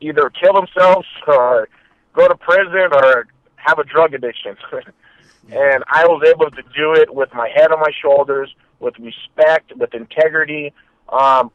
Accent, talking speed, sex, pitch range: American, 155 wpm, male, 125-155 Hz